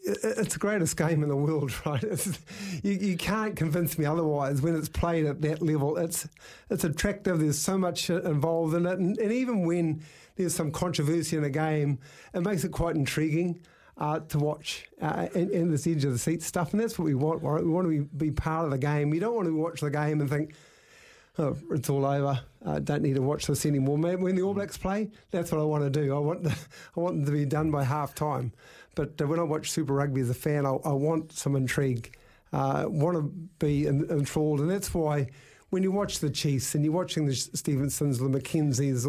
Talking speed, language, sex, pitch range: 230 wpm, English, male, 145-175 Hz